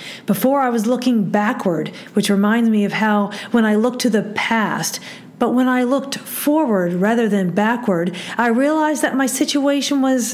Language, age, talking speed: English, 50-69, 175 wpm